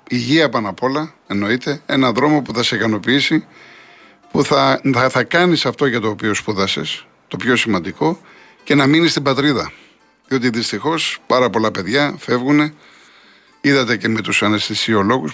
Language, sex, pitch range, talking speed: Greek, male, 120-155 Hz, 155 wpm